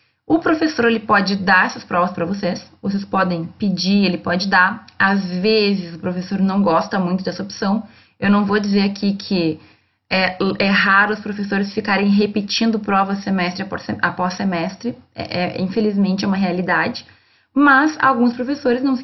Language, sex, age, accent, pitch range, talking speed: Portuguese, female, 20-39, Brazilian, 195-235 Hz, 160 wpm